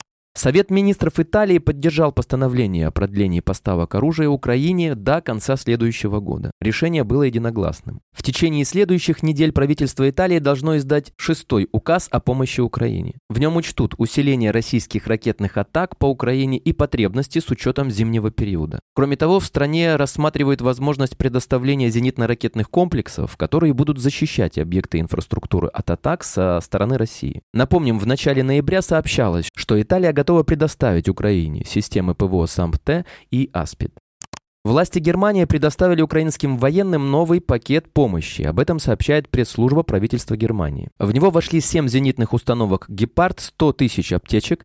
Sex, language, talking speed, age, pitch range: male, Russian, 140 wpm, 20-39, 110-155 Hz